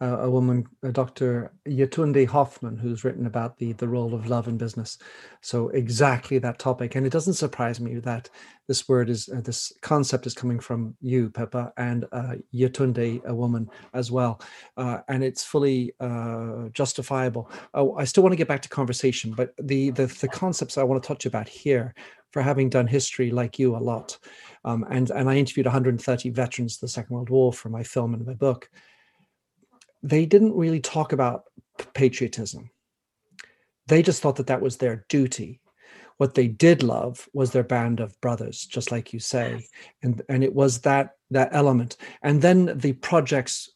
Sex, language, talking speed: male, English, 185 wpm